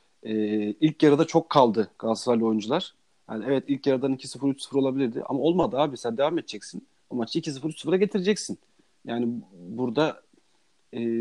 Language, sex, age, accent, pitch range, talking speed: Turkish, male, 40-59, native, 120-155 Hz, 135 wpm